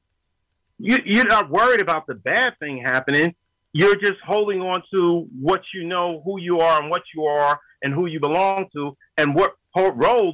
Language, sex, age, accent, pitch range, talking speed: English, male, 40-59, American, 140-190 Hz, 180 wpm